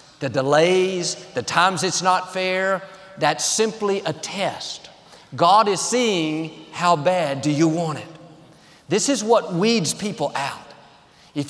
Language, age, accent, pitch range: English, 50-69, American, 160-200 Hz